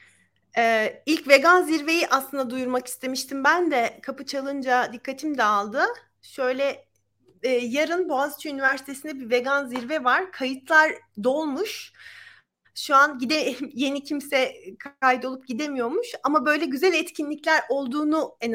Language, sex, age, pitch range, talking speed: Turkish, female, 40-59, 250-330 Hz, 120 wpm